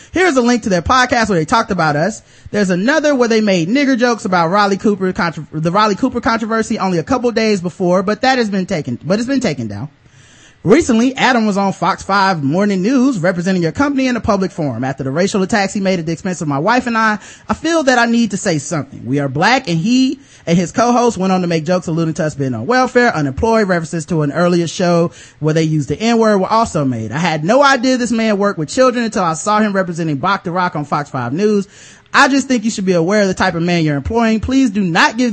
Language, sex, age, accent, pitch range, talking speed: English, male, 30-49, American, 170-235 Hz, 255 wpm